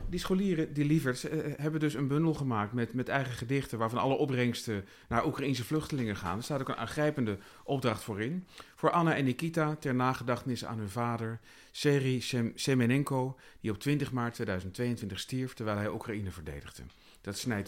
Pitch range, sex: 100-140 Hz, male